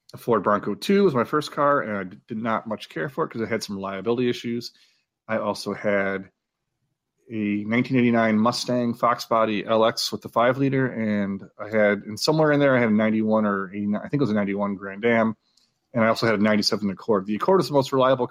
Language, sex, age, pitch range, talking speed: English, male, 30-49, 105-125 Hz, 220 wpm